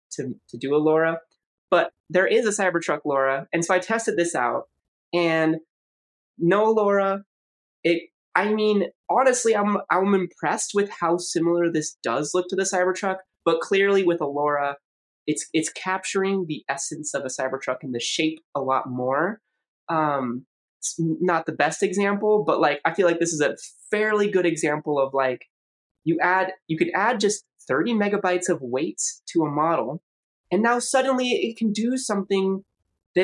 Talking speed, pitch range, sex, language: 170 wpm, 155-200 Hz, male, English